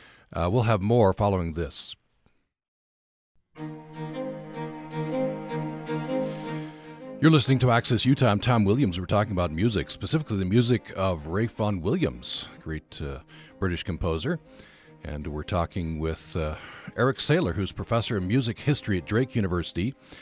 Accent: American